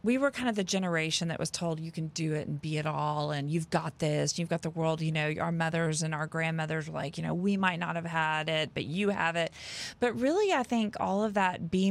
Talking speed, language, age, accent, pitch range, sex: 270 wpm, English, 30-49, American, 170-205 Hz, female